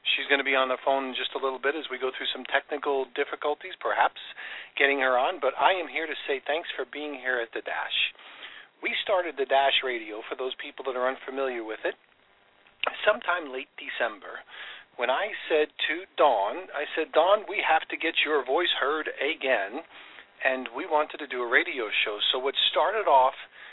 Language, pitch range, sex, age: English, 130-155 Hz, male, 40-59